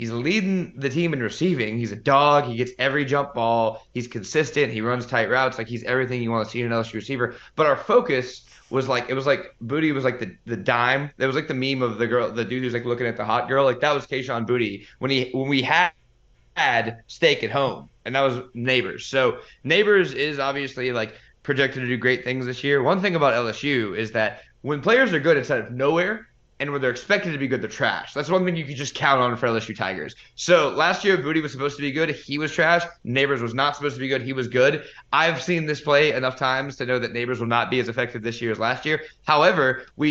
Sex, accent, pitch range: male, American, 120-145 Hz